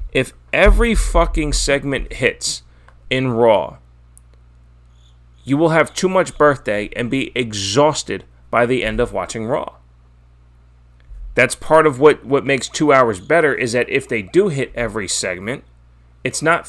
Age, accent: 30-49, American